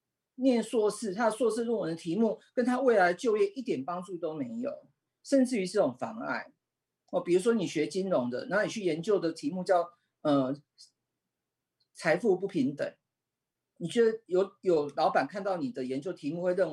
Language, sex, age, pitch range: Chinese, male, 50-69, 175-255 Hz